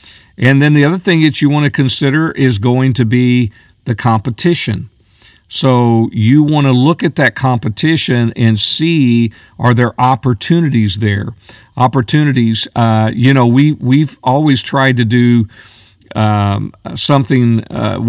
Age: 50-69